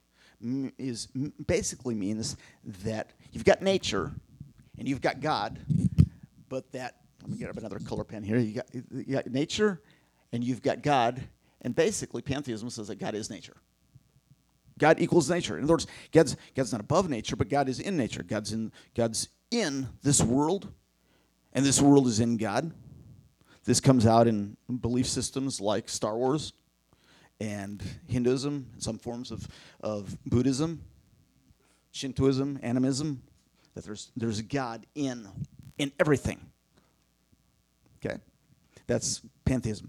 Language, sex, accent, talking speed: English, male, American, 140 wpm